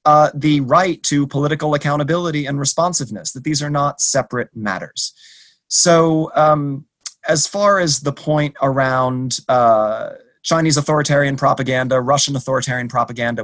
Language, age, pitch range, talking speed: English, 30-49, 130-155 Hz, 130 wpm